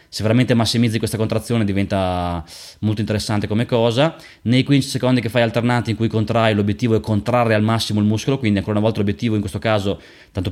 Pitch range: 100-115 Hz